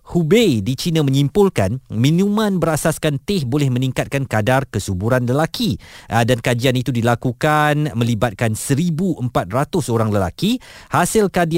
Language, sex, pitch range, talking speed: Malay, male, 120-175 Hz, 110 wpm